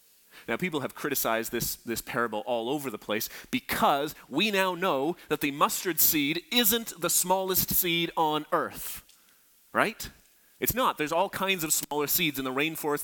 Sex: male